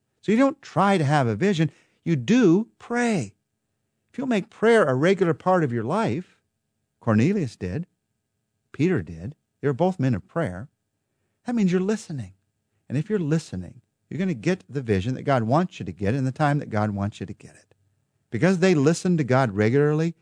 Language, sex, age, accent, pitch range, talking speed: English, male, 50-69, American, 110-170 Hz, 200 wpm